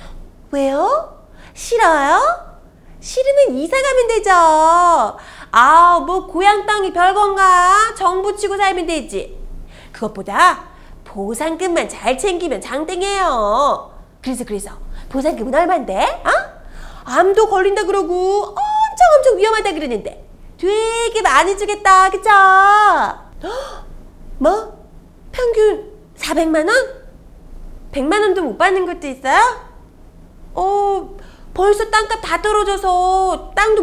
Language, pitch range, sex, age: Korean, 310-410 Hz, female, 30-49